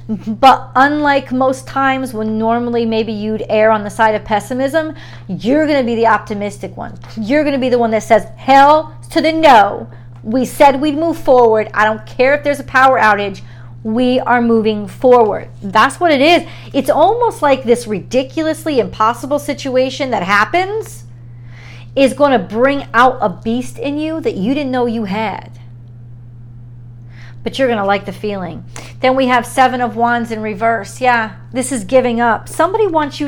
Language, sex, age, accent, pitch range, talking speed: English, female, 40-59, American, 190-260 Hz, 180 wpm